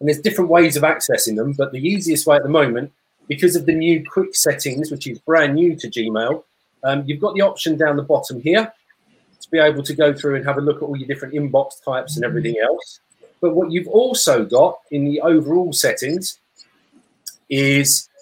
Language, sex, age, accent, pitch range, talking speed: English, male, 40-59, British, 140-175 Hz, 210 wpm